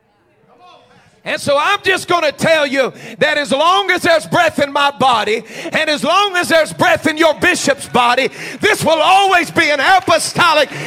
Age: 40-59